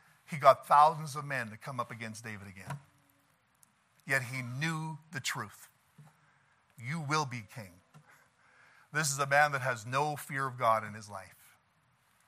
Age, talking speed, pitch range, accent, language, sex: 50-69, 160 wpm, 135-190 Hz, American, English, male